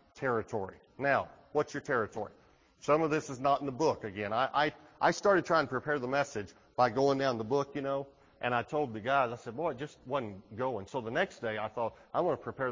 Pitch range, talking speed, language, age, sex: 120-155 Hz, 245 wpm, English, 40-59, male